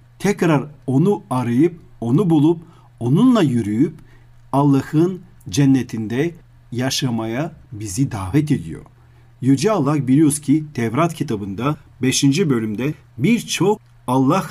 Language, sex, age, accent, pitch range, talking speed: Turkish, male, 40-59, native, 120-155 Hz, 95 wpm